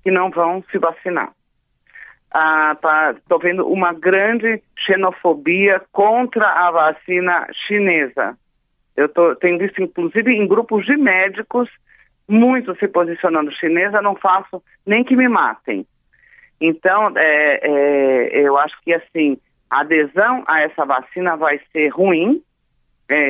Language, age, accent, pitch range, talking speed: Portuguese, 40-59, Brazilian, 155-210 Hz, 130 wpm